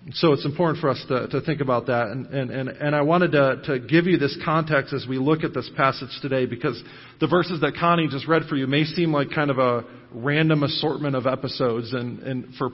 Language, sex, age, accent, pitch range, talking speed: English, male, 40-59, American, 125-160 Hz, 240 wpm